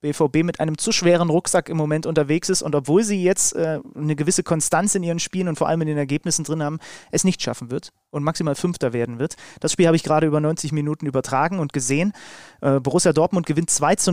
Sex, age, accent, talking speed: male, 30-49, German, 235 wpm